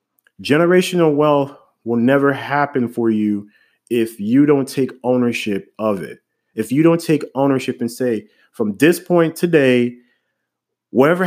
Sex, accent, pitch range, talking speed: male, American, 115-165 Hz, 140 wpm